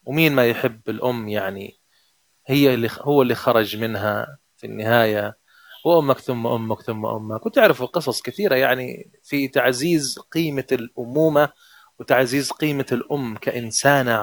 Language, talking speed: Arabic, 125 wpm